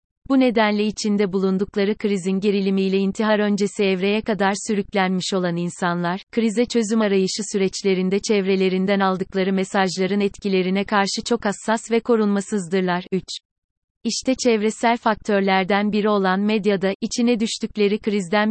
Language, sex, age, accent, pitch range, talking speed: Turkish, female, 30-49, native, 195-220 Hz, 115 wpm